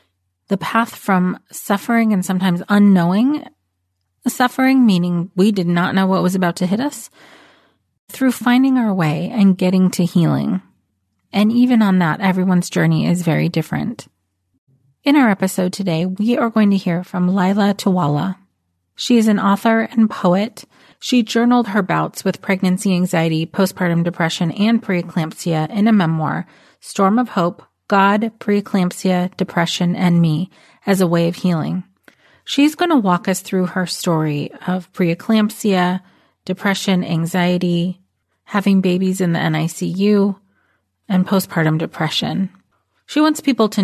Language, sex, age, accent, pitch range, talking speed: English, female, 30-49, American, 170-205 Hz, 145 wpm